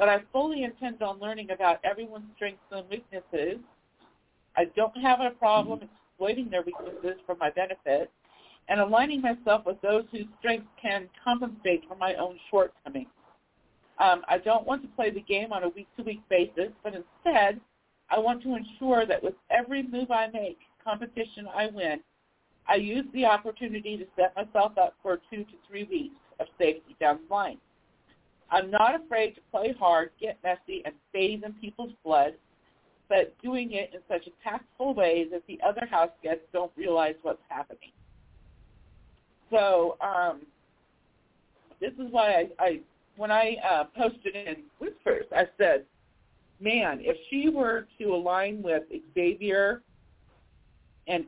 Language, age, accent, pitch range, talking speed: English, 50-69, American, 180-240 Hz, 155 wpm